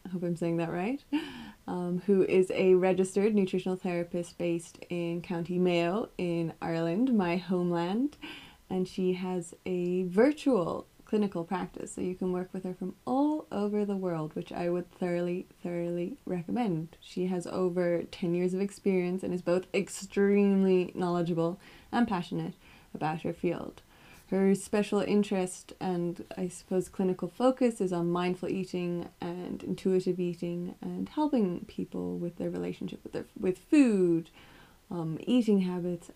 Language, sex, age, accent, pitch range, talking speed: English, female, 20-39, American, 175-195 Hz, 150 wpm